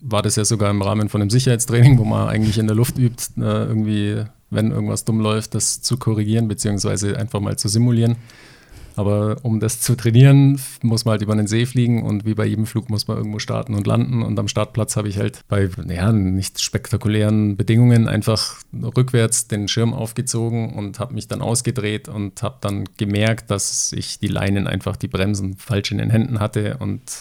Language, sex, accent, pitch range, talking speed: German, male, German, 105-115 Hz, 195 wpm